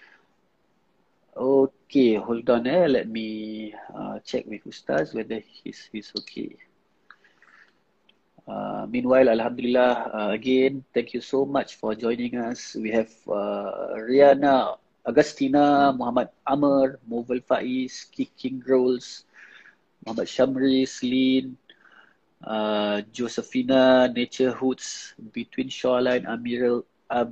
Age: 30-49